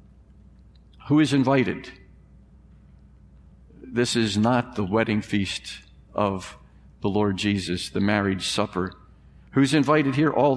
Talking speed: 115 wpm